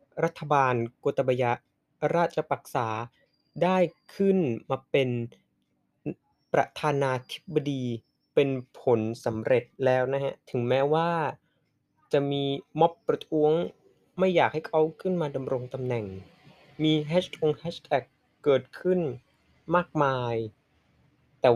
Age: 20-39